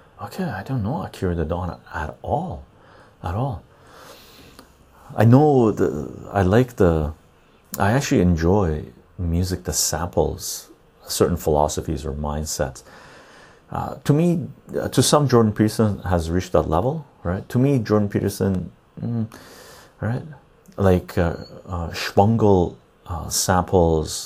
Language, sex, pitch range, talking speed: English, male, 80-100 Hz, 125 wpm